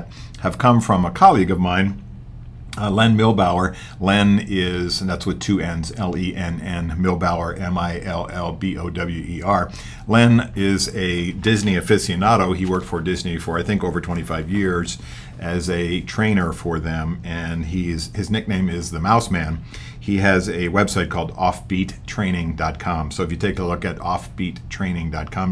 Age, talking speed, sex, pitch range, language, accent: 50-69, 145 wpm, male, 85-95 Hz, English, American